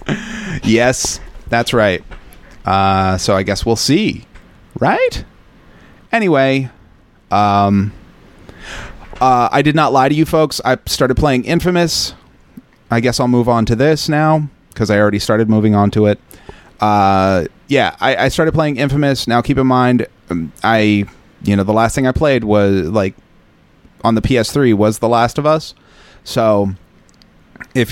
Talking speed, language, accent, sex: 155 wpm, English, American, male